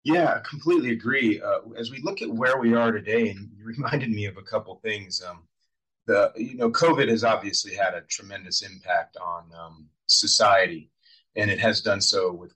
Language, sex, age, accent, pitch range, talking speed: English, male, 30-49, American, 100-120 Hz, 195 wpm